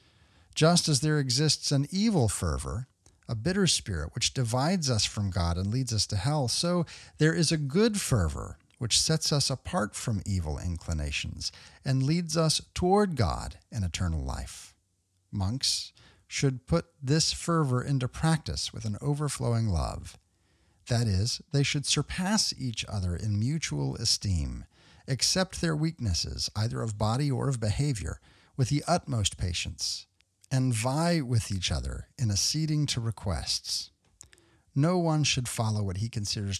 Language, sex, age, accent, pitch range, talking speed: English, male, 50-69, American, 95-140 Hz, 150 wpm